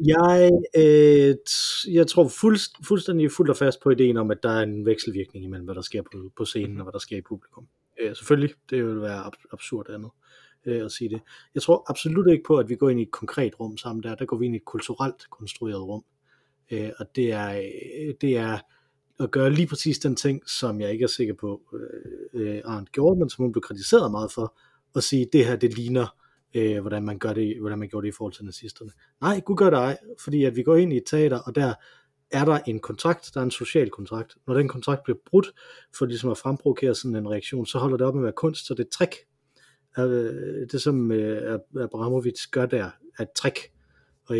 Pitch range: 110-145 Hz